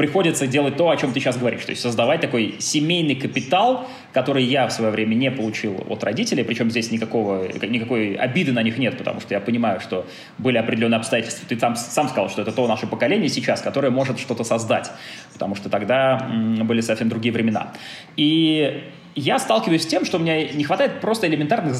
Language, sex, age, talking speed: Russian, male, 20-39, 195 wpm